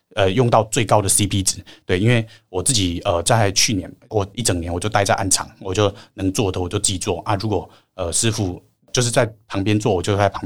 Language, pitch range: Chinese, 95-110 Hz